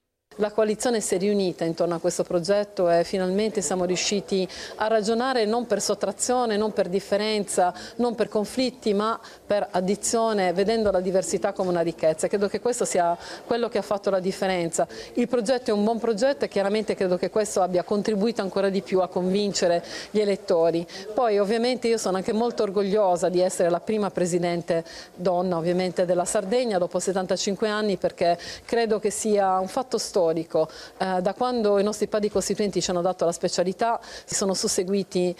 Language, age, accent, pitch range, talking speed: Italian, 40-59, native, 170-205 Hz, 175 wpm